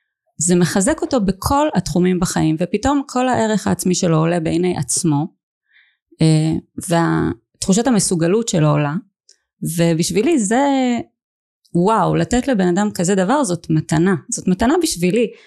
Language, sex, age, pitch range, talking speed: Hebrew, female, 20-39, 170-235 Hz, 120 wpm